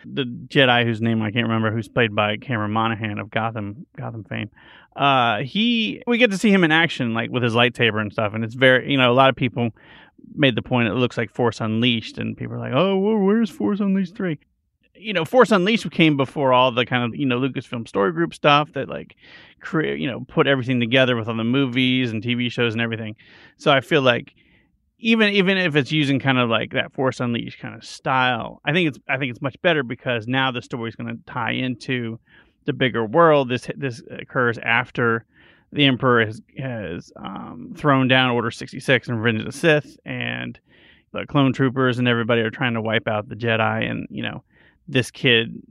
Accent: American